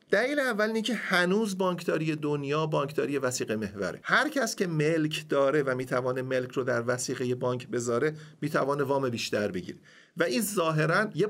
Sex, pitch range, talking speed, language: male, 125-170 Hz, 170 wpm, Persian